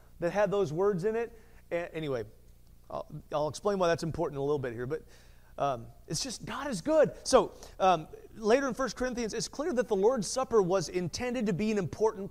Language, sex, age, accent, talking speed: English, male, 30-49, American, 210 wpm